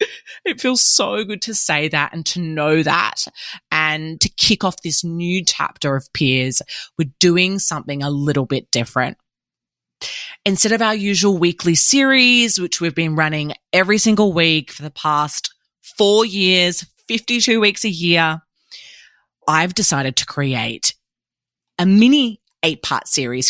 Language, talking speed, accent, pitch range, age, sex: English, 145 wpm, Australian, 145-205 Hz, 20-39, female